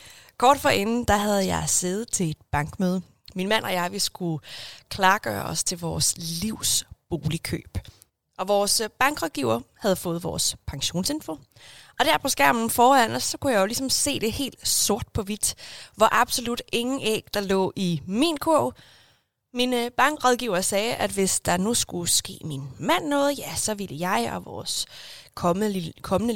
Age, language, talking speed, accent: 20-39, Danish, 175 wpm, native